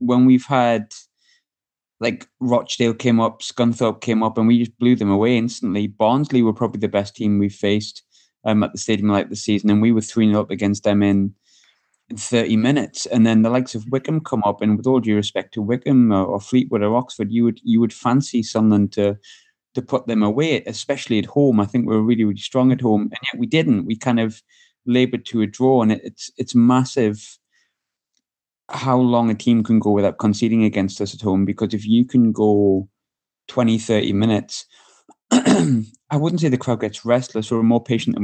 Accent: British